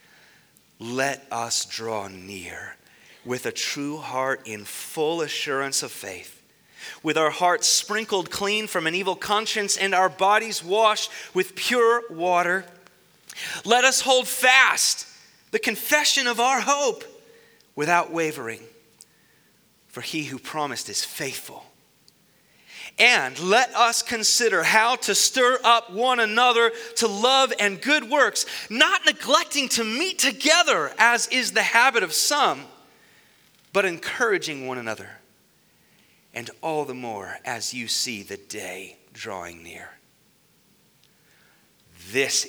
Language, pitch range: English, 145-225 Hz